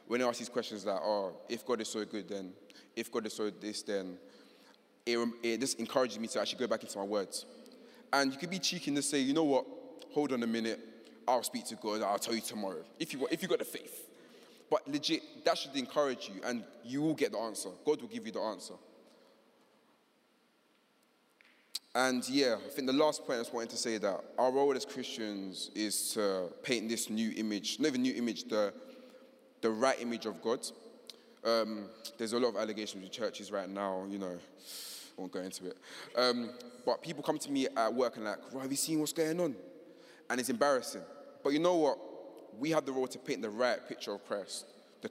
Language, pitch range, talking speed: English, 105-140 Hz, 220 wpm